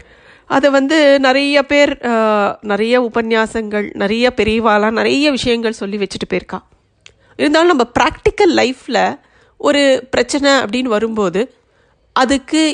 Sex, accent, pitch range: female, native, 225-275 Hz